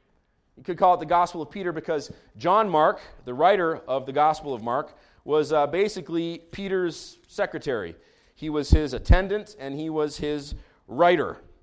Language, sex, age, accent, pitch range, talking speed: English, male, 30-49, American, 125-165 Hz, 165 wpm